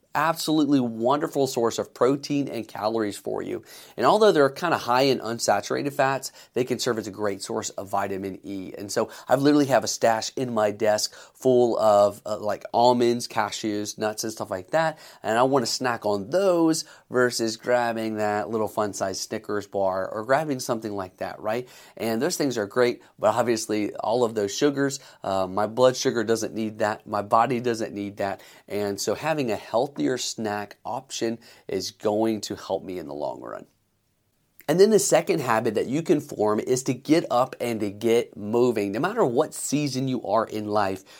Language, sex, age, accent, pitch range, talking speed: English, male, 30-49, American, 105-140 Hz, 195 wpm